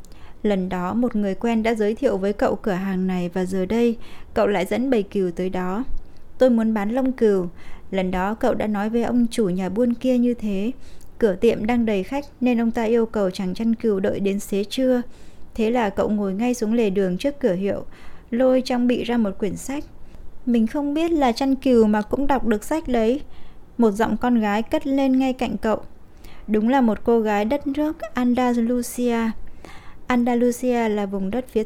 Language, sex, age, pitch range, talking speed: Vietnamese, female, 20-39, 205-245 Hz, 210 wpm